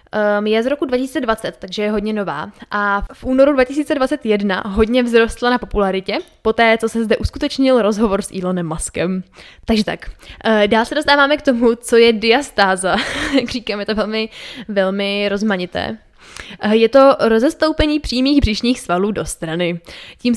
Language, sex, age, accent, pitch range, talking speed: Czech, female, 10-29, native, 190-225 Hz, 150 wpm